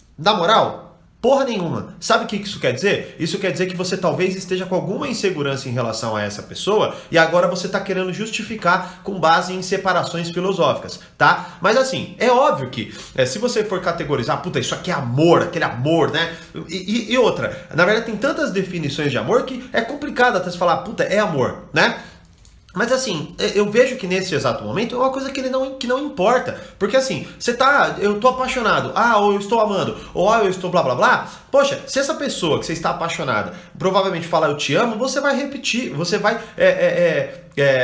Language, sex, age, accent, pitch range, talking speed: Portuguese, male, 30-49, Brazilian, 175-235 Hz, 210 wpm